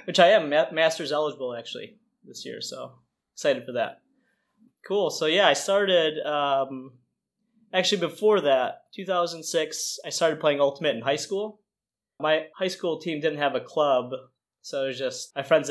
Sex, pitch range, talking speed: male, 130-165 Hz, 165 wpm